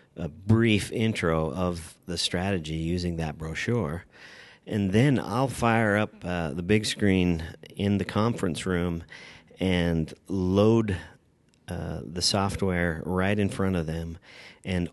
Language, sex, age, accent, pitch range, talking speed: English, male, 40-59, American, 80-95 Hz, 135 wpm